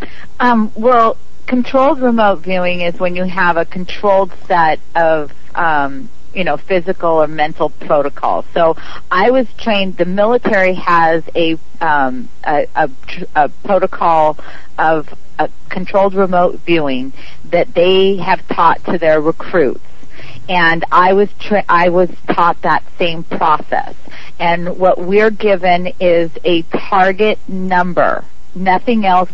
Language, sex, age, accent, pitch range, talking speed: English, female, 50-69, American, 165-195 Hz, 135 wpm